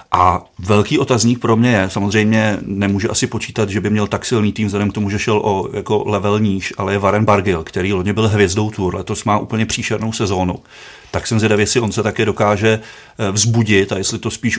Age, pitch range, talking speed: 30-49, 100-110 Hz, 215 wpm